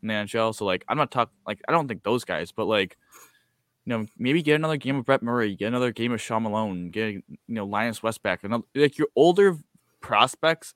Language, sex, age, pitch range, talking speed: English, male, 20-39, 110-150 Hz, 230 wpm